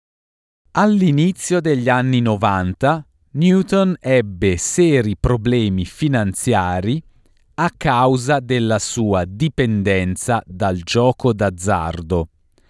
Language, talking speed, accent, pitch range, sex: Italian, 80 wpm, native, 100-140 Hz, male